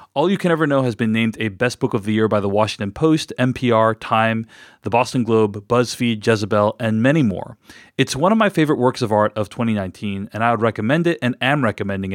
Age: 30-49